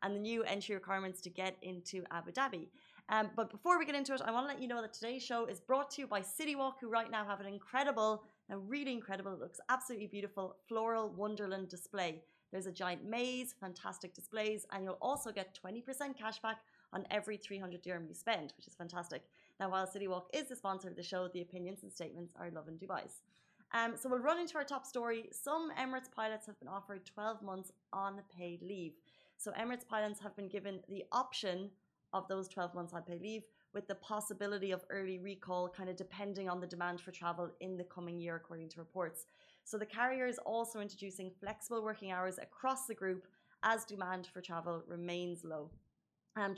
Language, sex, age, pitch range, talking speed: Arabic, female, 30-49, 185-230 Hz, 205 wpm